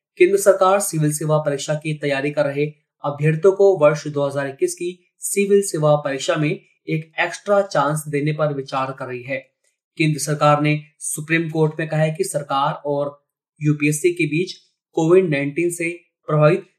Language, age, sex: Hindi, 20-39, male